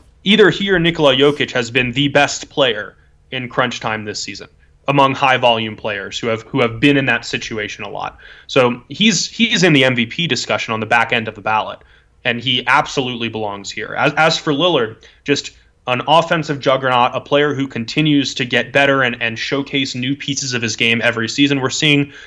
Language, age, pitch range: English, 20-39, 120-145 Hz